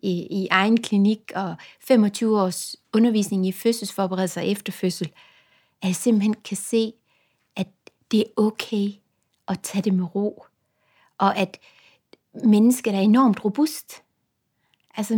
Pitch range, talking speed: 200-260 Hz, 130 wpm